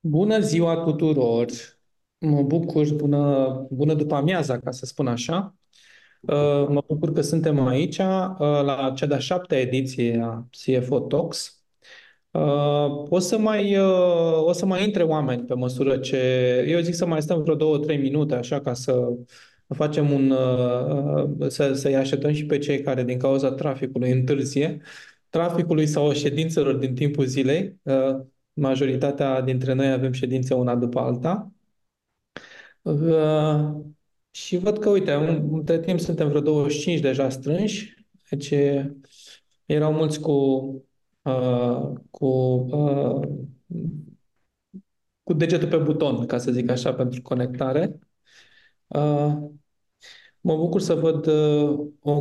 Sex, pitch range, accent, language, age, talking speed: male, 130-160 Hz, native, Romanian, 20-39, 120 wpm